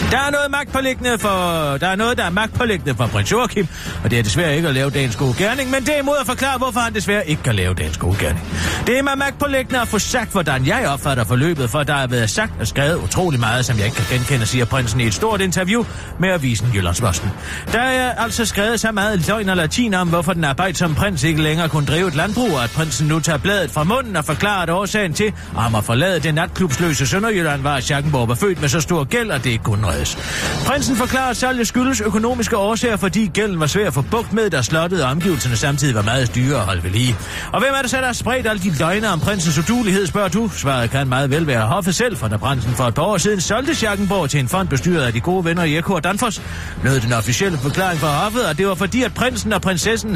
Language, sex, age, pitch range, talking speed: Danish, male, 40-59, 130-210 Hz, 250 wpm